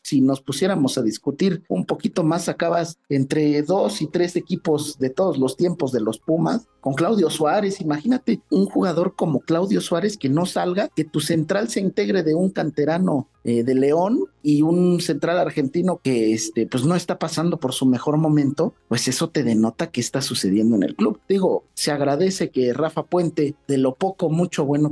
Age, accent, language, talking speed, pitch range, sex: 50-69, Mexican, Spanish, 190 wpm, 135-180 Hz, male